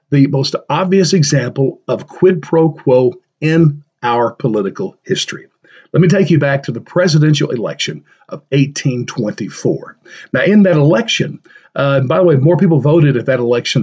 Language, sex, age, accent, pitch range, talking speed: English, male, 50-69, American, 135-170 Hz, 160 wpm